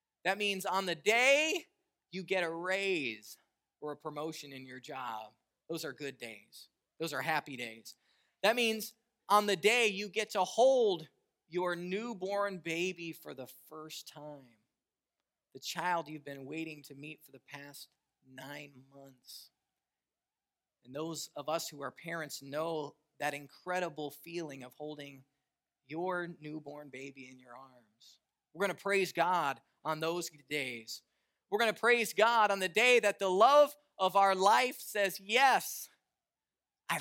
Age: 30-49